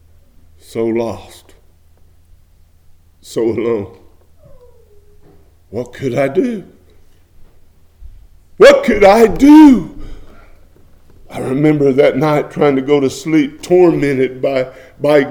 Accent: American